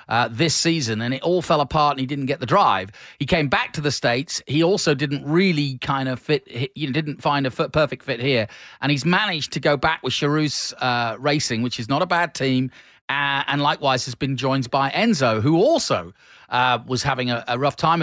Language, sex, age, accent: English, male, 40-59, British